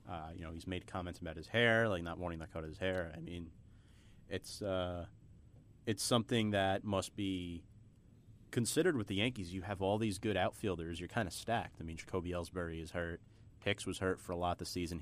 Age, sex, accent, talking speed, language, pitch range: 30-49, male, American, 210 wpm, English, 90-110 Hz